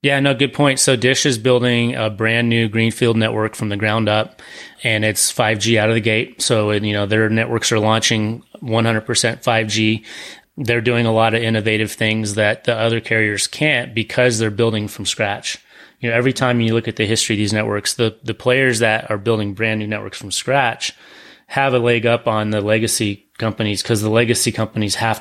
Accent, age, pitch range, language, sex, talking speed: American, 30-49, 105-120 Hz, English, male, 205 wpm